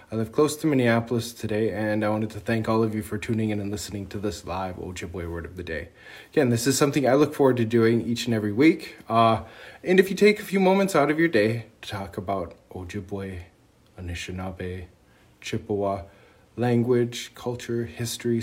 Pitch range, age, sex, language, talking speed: 95-125 Hz, 20-39, male, English, 200 wpm